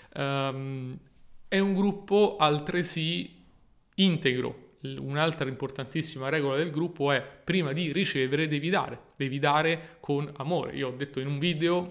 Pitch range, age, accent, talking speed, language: 135-165 Hz, 30-49, native, 130 wpm, Italian